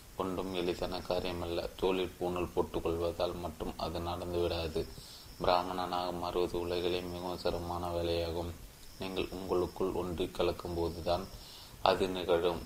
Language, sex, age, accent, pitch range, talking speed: Tamil, male, 20-39, native, 85-95 Hz, 105 wpm